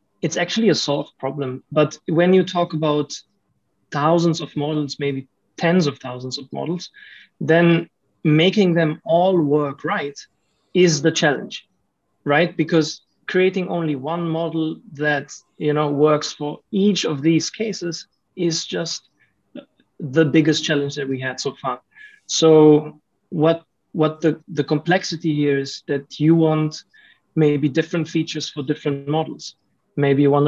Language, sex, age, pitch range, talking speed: English, male, 30-49, 145-165 Hz, 145 wpm